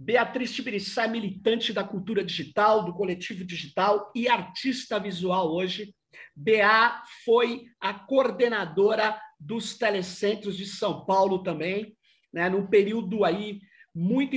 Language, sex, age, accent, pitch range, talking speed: Portuguese, male, 50-69, Brazilian, 190-240 Hz, 120 wpm